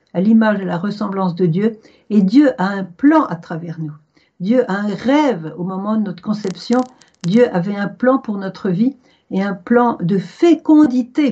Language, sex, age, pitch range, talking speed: French, female, 60-79, 185-235 Hz, 195 wpm